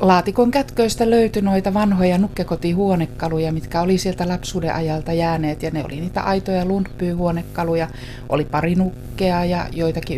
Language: Finnish